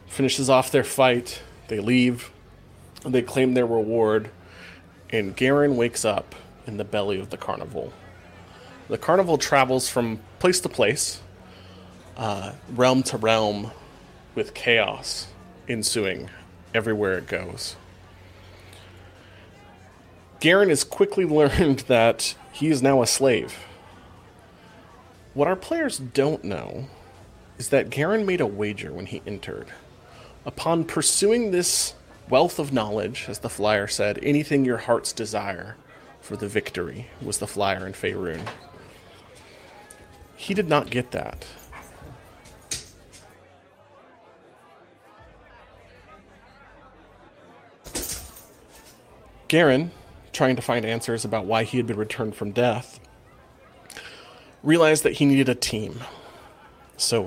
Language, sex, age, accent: English, male, 30-49, American